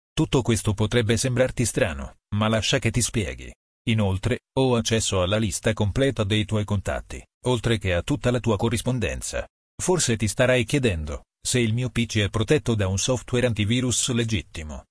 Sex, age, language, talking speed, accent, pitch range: male, 40-59, Italian, 165 wpm, native, 105-125 Hz